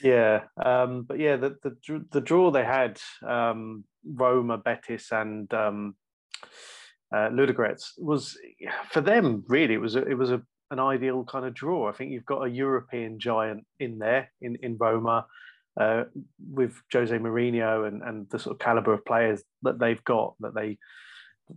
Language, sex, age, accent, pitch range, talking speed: English, male, 30-49, British, 110-130 Hz, 170 wpm